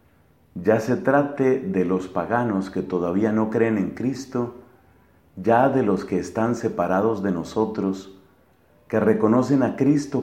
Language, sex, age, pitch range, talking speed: English, male, 40-59, 90-115 Hz, 140 wpm